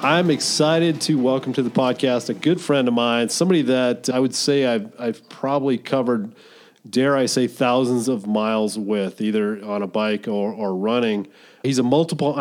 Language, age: English, 40-59